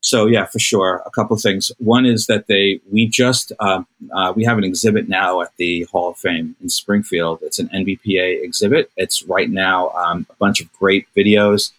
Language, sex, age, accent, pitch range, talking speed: English, male, 30-49, American, 90-105 Hz, 210 wpm